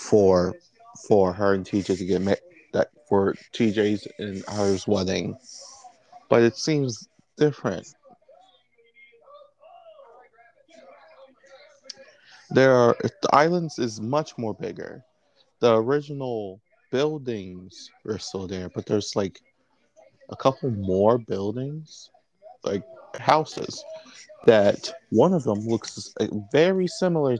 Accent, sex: American, male